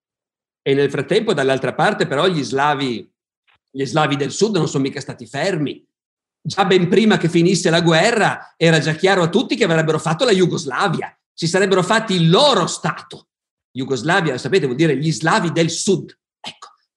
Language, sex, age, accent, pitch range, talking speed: Italian, male, 50-69, native, 160-205 Hz, 175 wpm